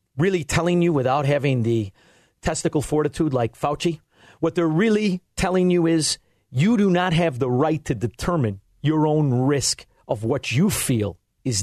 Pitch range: 130-195 Hz